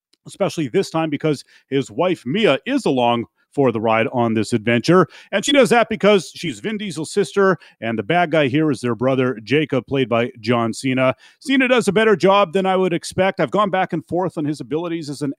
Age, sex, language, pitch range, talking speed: 40-59, male, English, 130-190 Hz, 220 wpm